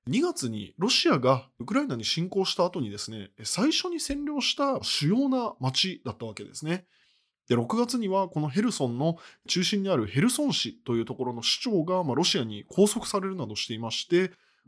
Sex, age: male, 20-39